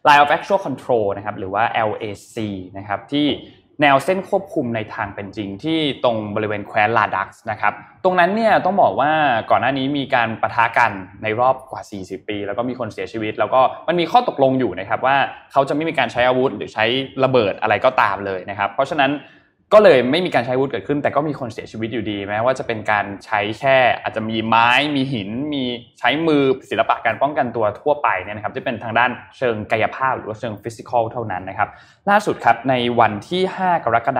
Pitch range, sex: 105-140 Hz, male